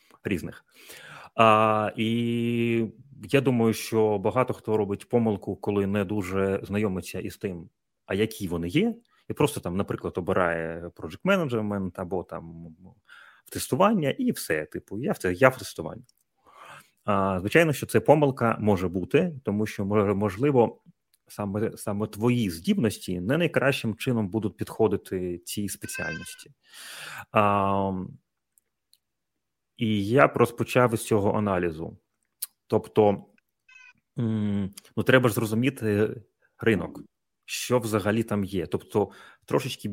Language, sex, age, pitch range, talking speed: Ukrainian, male, 30-49, 95-115 Hz, 115 wpm